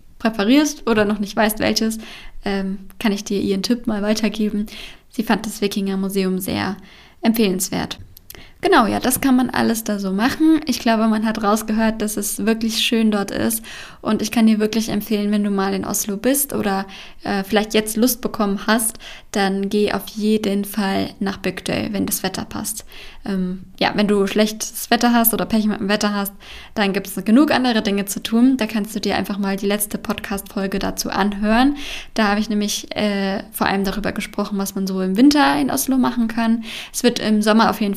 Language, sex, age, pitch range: German, female, 10-29, 200-225 Hz